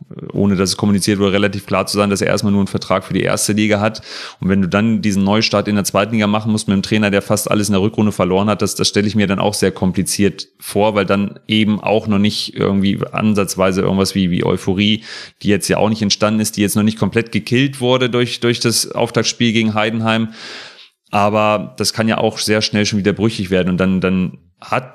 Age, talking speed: 30-49, 240 wpm